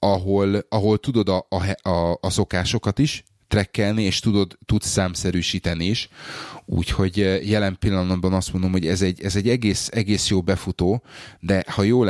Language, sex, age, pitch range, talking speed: Hungarian, male, 30-49, 90-105 Hz, 160 wpm